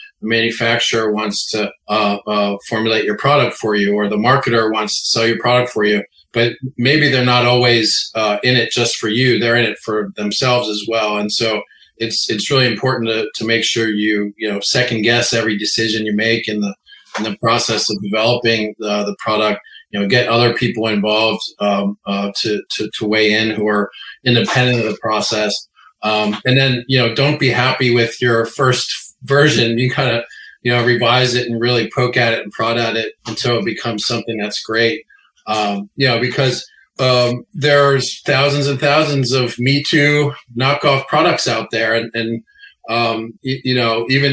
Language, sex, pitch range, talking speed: English, male, 110-125 Hz, 195 wpm